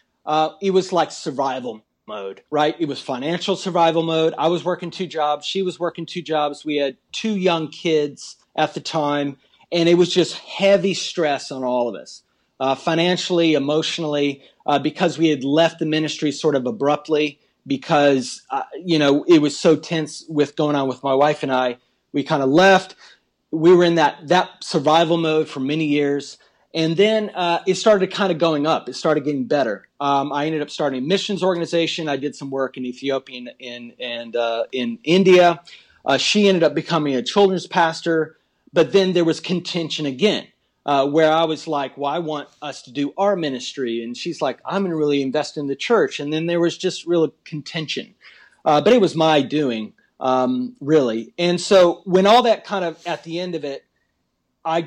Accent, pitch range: American, 140-175 Hz